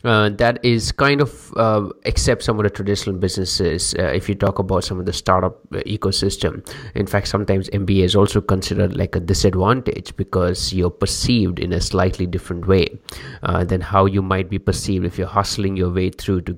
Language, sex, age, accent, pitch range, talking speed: English, male, 30-49, Indian, 95-110 Hz, 195 wpm